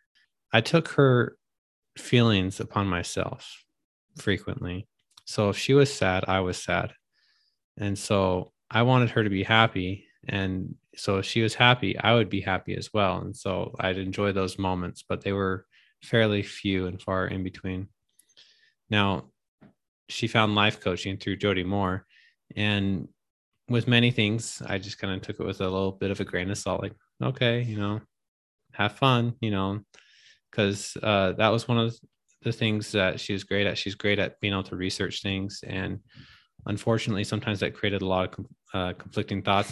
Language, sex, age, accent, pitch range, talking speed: English, male, 20-39, American, 95-115 Hz, 175 wpm